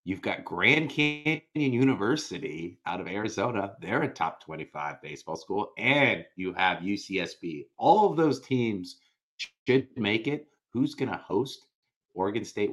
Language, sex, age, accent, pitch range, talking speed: English, male, 30-49, American, 95-140 Hz, 145 wpm